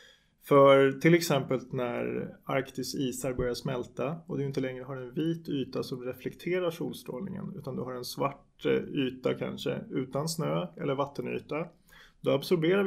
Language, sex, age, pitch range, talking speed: Swedish, male, 20-39, 135-170 Hz, 150 wpm